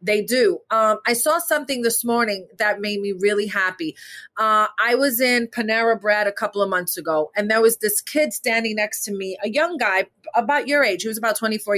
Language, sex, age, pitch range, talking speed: English, female, 30-49, 215-270 Hz, 220 wpm